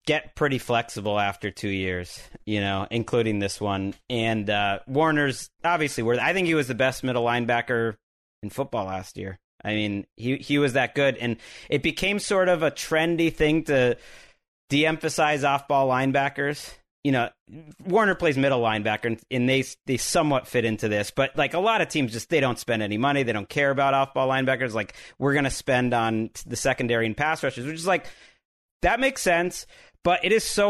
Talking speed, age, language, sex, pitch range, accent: 195 wpm, 30-49, English, male, 115-150 Hz, American